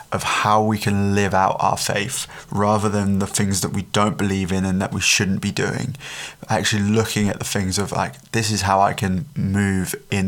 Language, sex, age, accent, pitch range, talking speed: English, male, 20-39, British, 100-110 Hz, 215 wpm